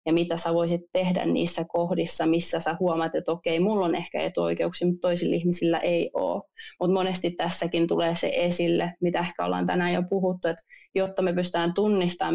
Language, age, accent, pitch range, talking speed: Finnish, 20-39, native, 165-180 Hz, 190 wpm